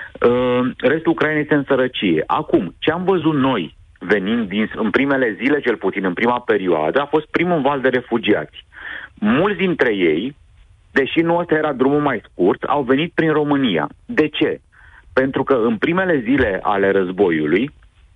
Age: 40-59